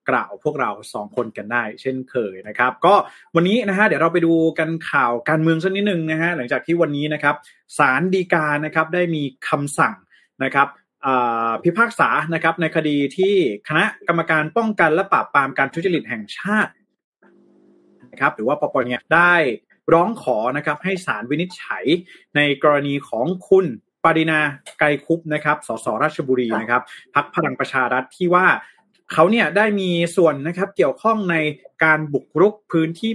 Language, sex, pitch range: Thai, male, 140-175 Hz